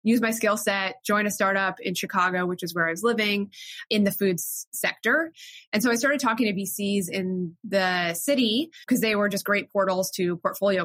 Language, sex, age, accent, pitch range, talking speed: English, female, 20-39, American, 175-215 Hz, 205 wpm